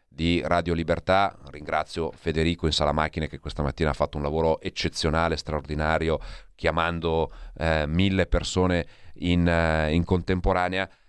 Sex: male